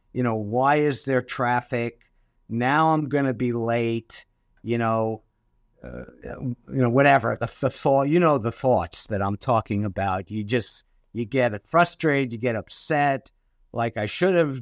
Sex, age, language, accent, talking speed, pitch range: male, 60-79, English, American, 170 wpm, 105-130 Hz